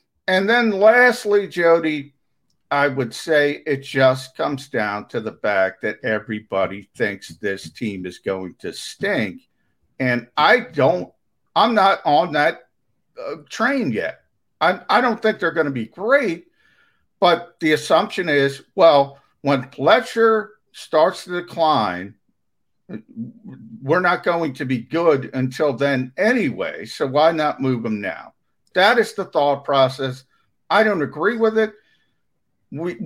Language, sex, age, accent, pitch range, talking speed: English, male, 50-69, American, 125-180 Hz, 145 wpm